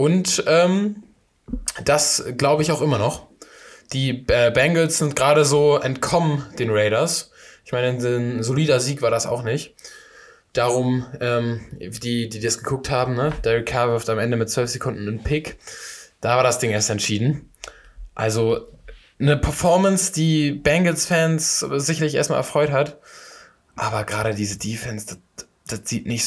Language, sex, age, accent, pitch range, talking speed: German, male, 10-29, German, 100-130 Hz, 150 wpm